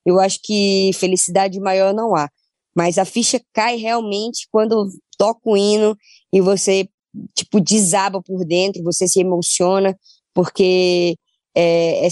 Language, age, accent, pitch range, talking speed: Portuguese, 10-29, Brazilian, 180-200 Hz, 140 wpm